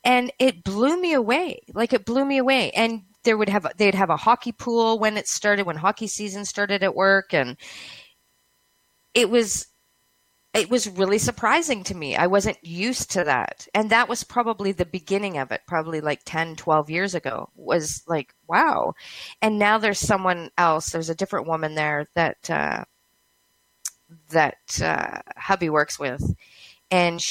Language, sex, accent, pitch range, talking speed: English, female, American, 165-230 Hz, 170 wpm